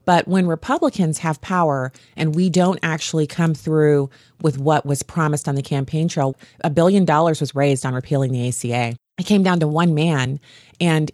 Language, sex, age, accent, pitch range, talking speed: English, female, 30-49, American, 140-180 Hz, 190 wpm